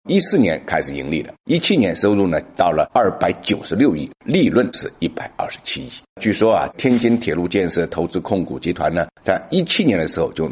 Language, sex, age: Chinese, male, 50-69